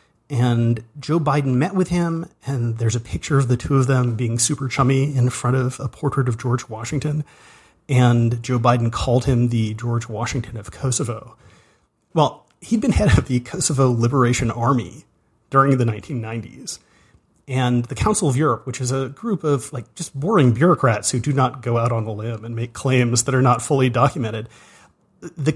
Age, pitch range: 30-49, 120-150 Hz